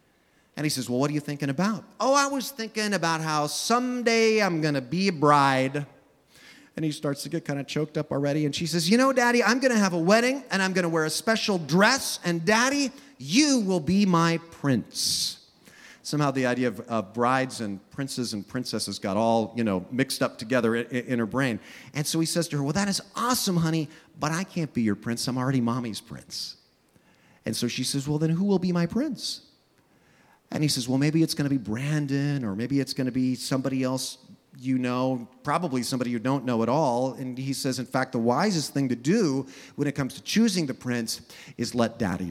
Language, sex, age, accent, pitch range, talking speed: English, male, 40-59, American, 125-170 Hz, 225 wpm